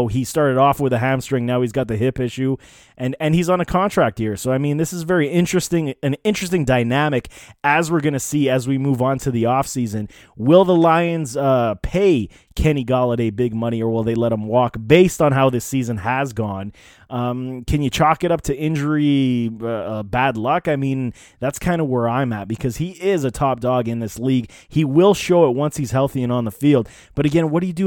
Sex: male